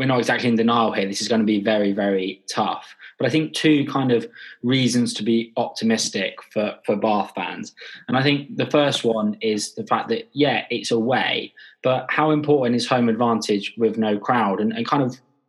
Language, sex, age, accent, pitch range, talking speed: English, male, 20-39, British, 110-130 Hz, 215 wpm